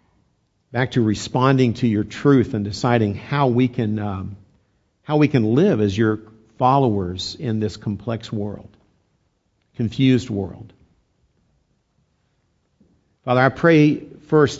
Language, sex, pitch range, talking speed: English, male, 100-120 Hz, 120 wpm